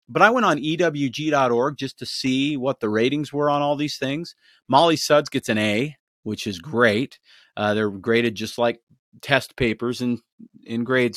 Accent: American